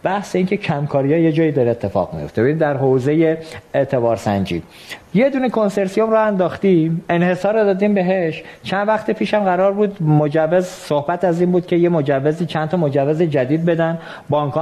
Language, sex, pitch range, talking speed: Persian, male, 150-195 Hz, 165 wpm